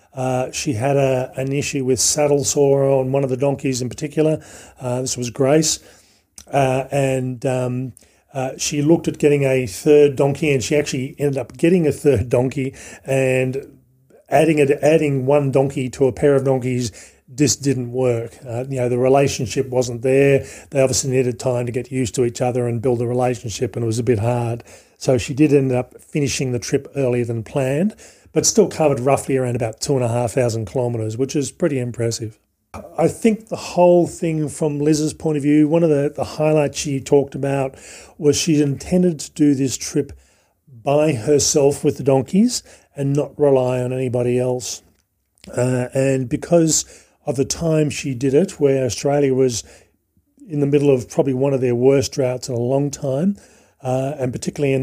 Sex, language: male, English